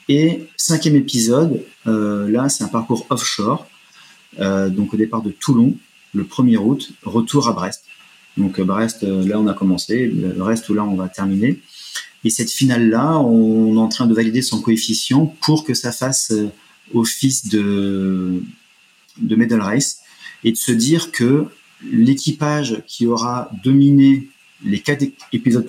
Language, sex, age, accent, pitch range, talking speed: French, male, 40-59, French, 105-130 Hz, 150 wpm